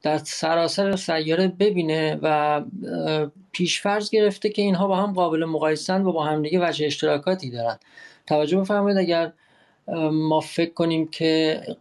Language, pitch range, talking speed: English, 135-190 Hz, 140 wpm